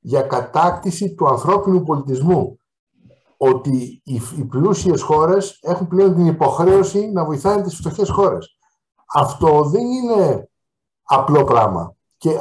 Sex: male